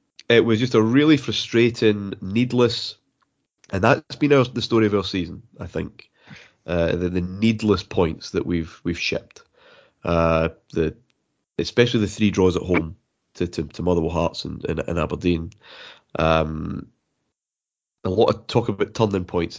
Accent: British